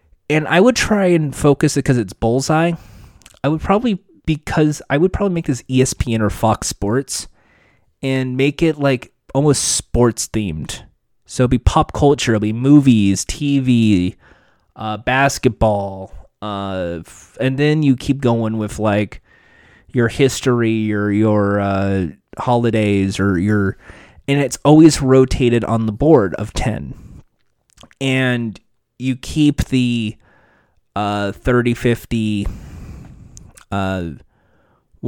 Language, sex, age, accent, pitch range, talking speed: English, male, 20-39, American, 105-140 Hz, 130 wpm